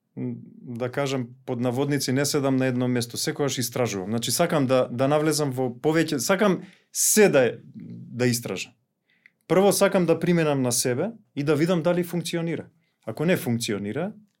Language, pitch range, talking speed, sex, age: English, 125-165 Hz, 155 wpm, male, 30-49